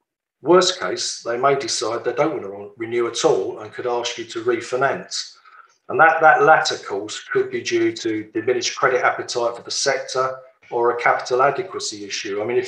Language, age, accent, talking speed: English, 50-69, British, 195 wpm